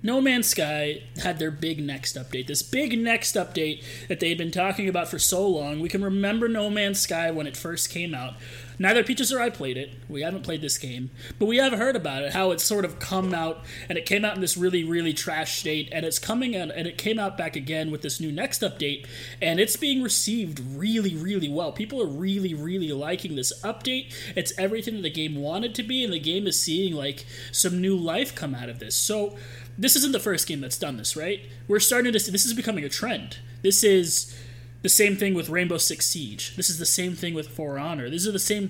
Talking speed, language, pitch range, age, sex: 235 wpm, English, 145-200 Hz, 30-49, male